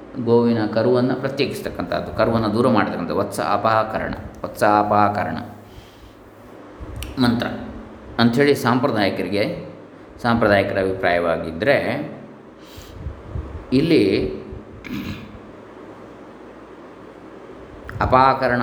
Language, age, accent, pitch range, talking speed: Kannada, 20-39, native, 105-130 Hz, 55 wpm